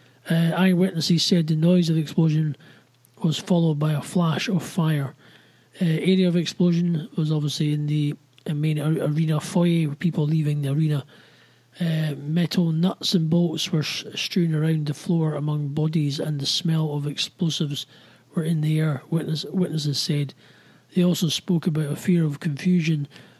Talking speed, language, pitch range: 165 wpm, English, 150-170 Hz